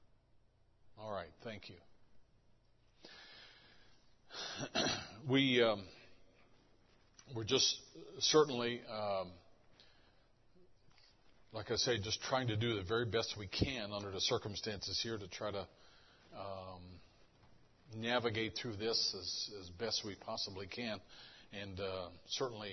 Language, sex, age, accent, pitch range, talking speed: English, male, 50-69, American, 95-115 Hz, 110 wpm